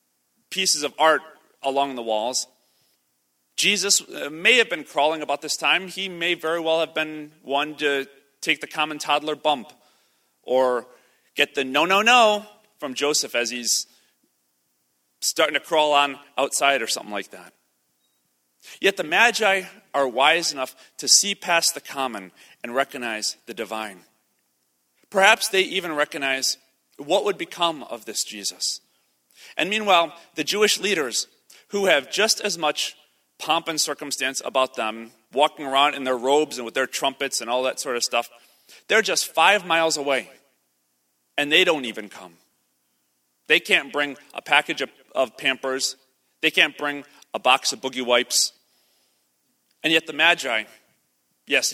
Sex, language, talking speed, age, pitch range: male, English, 150 wpm, 40-59, 115-160 Hz